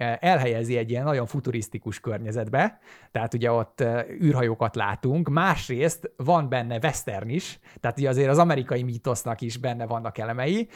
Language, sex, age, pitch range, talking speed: Hungarian, male, 30-49, 115-155 Hz, 140 wpm